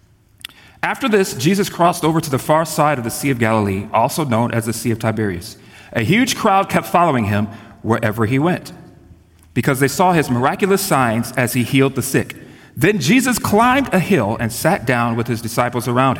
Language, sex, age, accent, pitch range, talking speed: English, male, 40-59, American, 115-160 Hz, 195 wpm